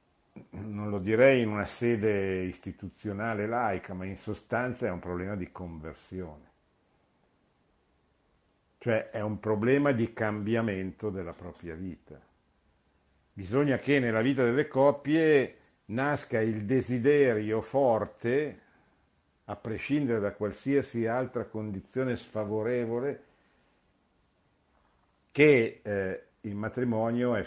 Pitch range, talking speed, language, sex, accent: 85-115 Hz, 105 wpm, Italian, male, native